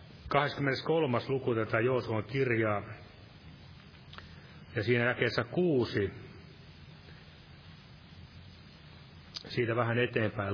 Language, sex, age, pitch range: Finnish, male, 30-49, 105-135 Hz